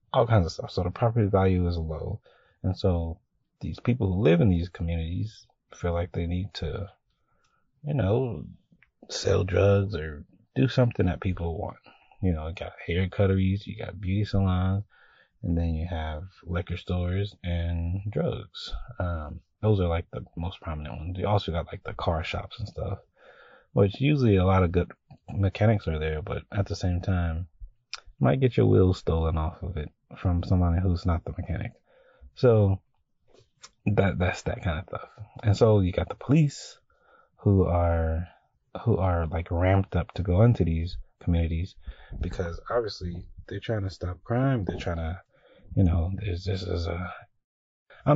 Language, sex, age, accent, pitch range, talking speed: English, male, 30-49, American, 85-100 Hz, 175 wpm